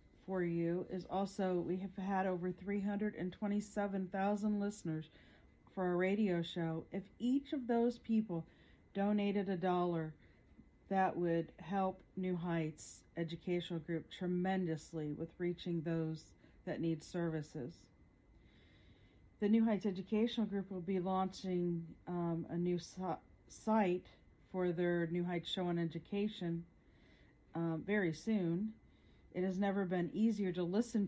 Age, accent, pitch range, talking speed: 40-59, American, 170-200 Hz, 125 wpm